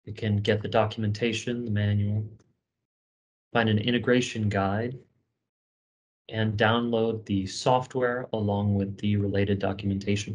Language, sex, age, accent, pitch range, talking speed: English, male, 30-49, American, 100-120 Hz, 115 wpm